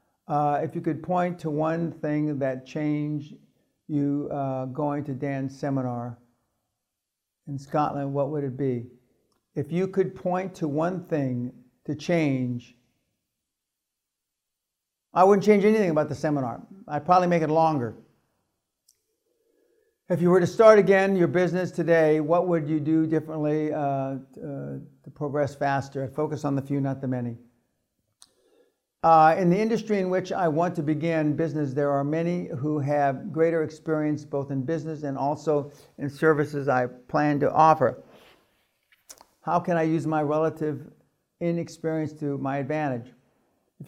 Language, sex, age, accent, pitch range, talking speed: English, male, 60-79, American, 140-170 Hz, 150 wpm